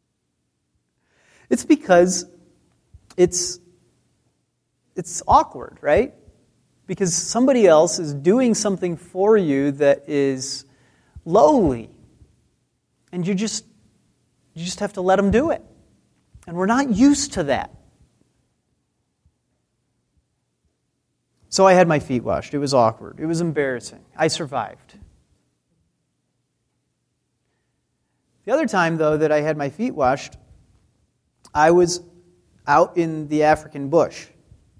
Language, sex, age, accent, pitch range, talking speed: English, male, 40-59, American, 135-175 Hz, 110 wpm